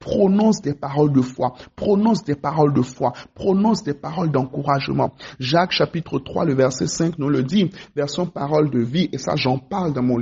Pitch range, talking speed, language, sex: 140-190 Hz, 200 wpm, French, male